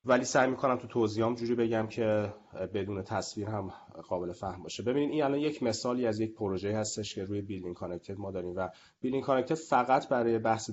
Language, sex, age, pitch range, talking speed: Persian, male, 30-49, 100-125 Hz, 195 wpm